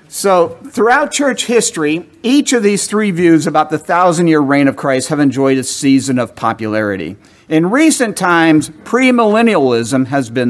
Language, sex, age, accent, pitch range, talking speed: English, male, 50-69, American, 135-210 Hz, 160 wpm